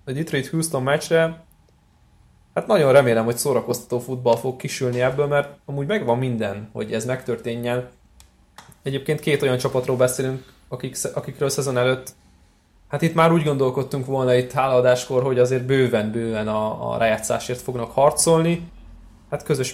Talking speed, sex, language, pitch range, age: 145 wpm, male, Hungarian, 115-145 Hz, 20-39